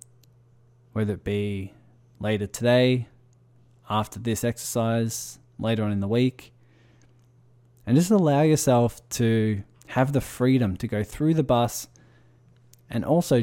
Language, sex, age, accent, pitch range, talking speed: English, male, 20-39, Australian, 115-125 Hz, 125 wpm